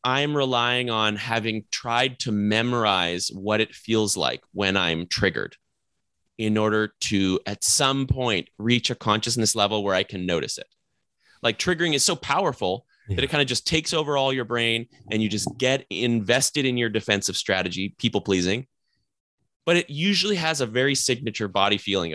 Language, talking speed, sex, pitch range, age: English, 170 wpm, male, 105-135 Hz, 30-49